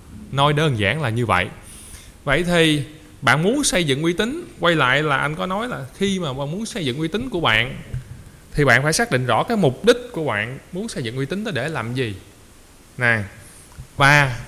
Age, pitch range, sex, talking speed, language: 20-39, 115-180 Hz, male, 220 wpm, Vietnamese